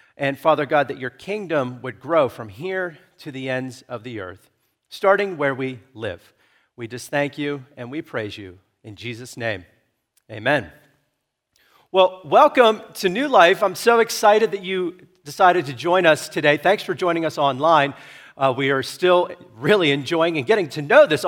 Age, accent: 40-59, American